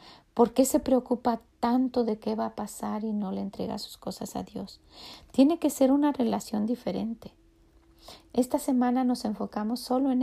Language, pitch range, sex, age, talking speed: Spanish, 205-255 Hz, female, 40-59, 175 wpm